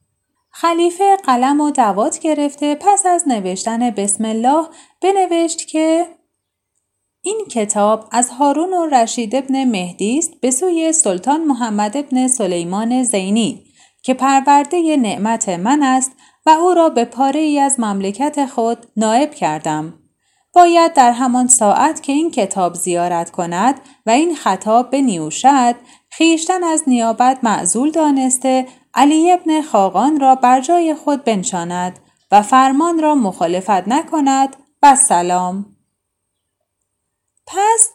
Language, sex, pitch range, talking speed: Persian, female, 210-310 Hz, 120 wpm